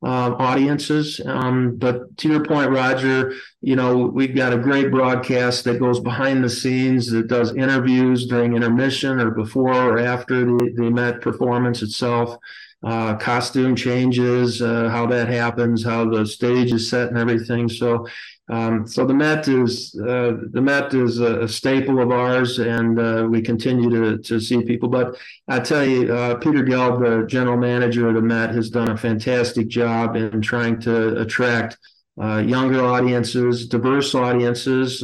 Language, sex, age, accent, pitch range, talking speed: English, male, 40-59, American, 115-125 Hz, 170 wpm